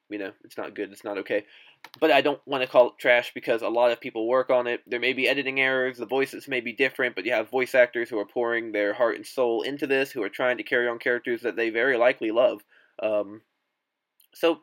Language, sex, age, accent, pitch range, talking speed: English, male, 20-39, American, 115-135 Hz, 255 wpm